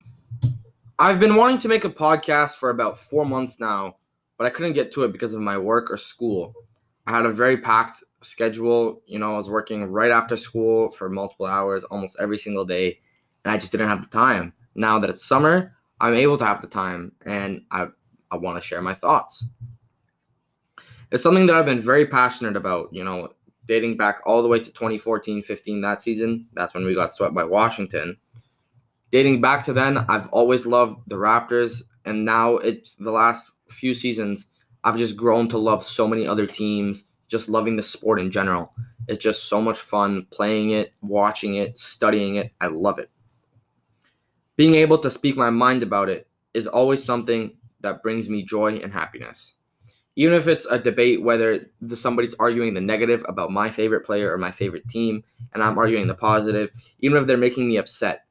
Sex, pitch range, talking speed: male, 105-120 Hz, 190 wpm